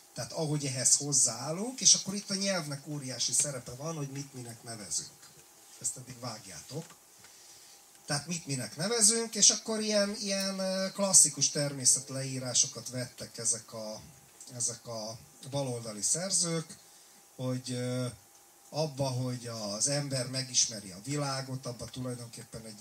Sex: male